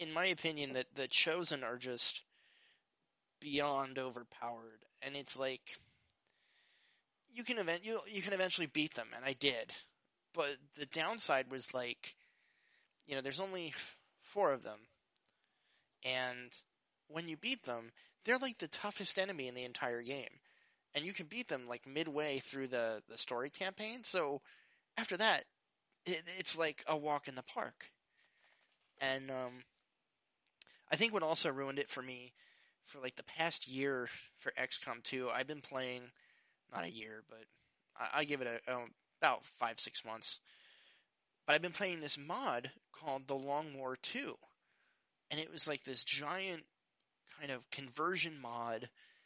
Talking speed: 155 wpm